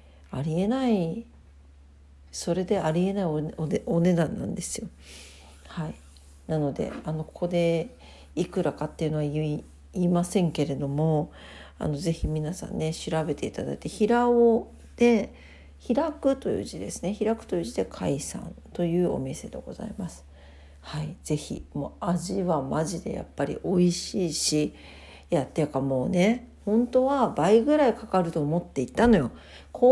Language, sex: Japanese, female